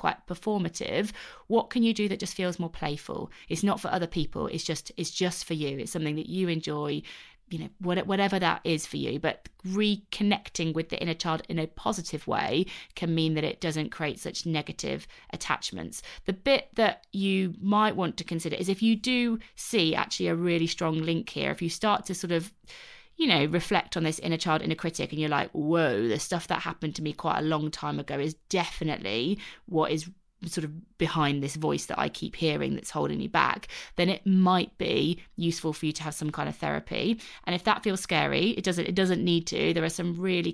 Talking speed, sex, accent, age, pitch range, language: 220 wpm, female, British, 30-49, 160-190 Hz, English